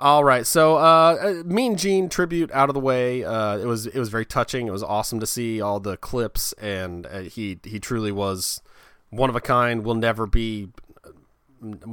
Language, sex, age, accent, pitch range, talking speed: English, male, 30-49, American, 100-120 Hz, 190 wpm